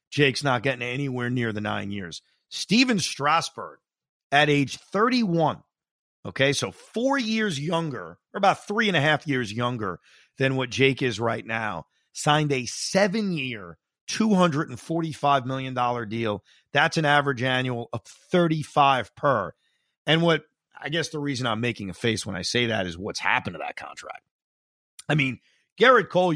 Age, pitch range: 40-59, 120-155 Hz